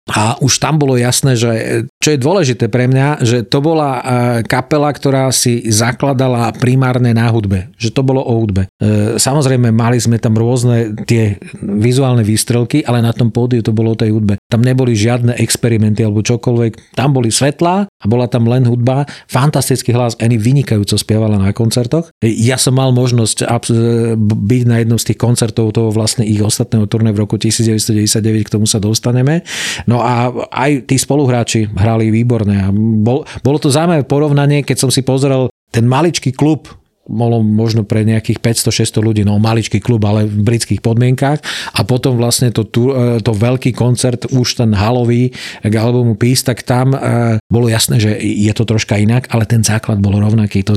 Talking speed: 175 wpm